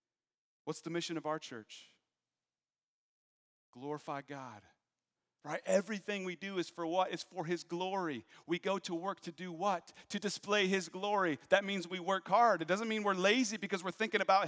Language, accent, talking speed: English, American, 180 wpm